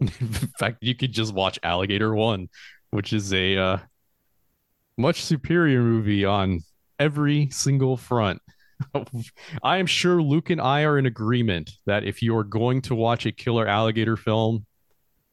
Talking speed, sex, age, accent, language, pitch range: 155 wpm, male, 30-49, American, English, 95-120 Hz